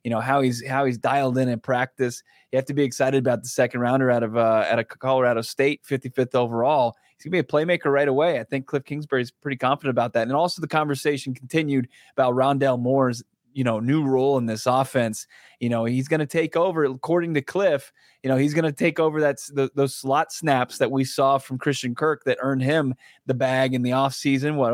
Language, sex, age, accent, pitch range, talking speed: English, male, 20-39, American, 120-140 Hz, 235 wpm